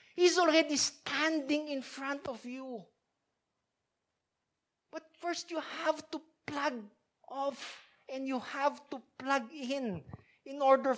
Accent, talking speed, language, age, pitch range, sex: Filipino, 120 wpm, English, 50-69, 210-295 Hz, male